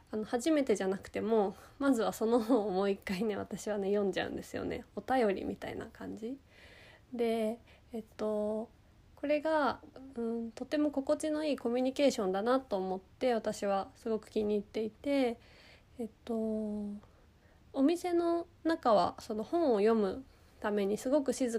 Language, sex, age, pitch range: Japanese, female, 20-39, 210-260 Hz